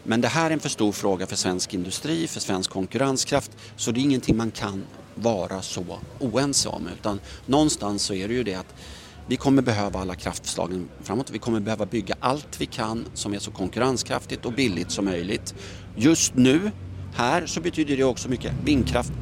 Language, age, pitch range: Swedish, 30-49, 100-130 Hz